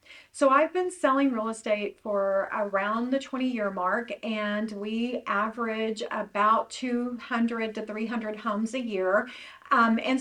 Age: 40-59